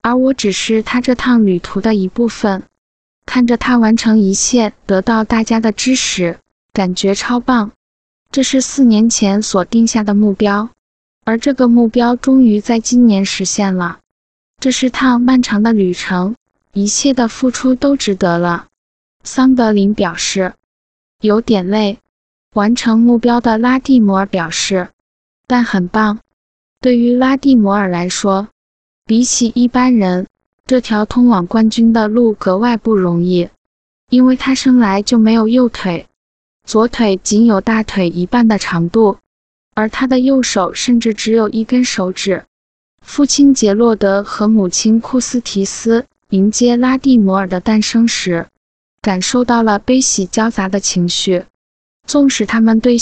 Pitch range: 195-245 Hz